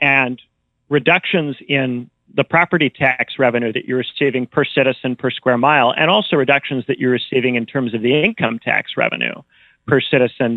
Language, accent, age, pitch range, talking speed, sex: English, American, 40-59, 125-140 Hz, 170 wpm, male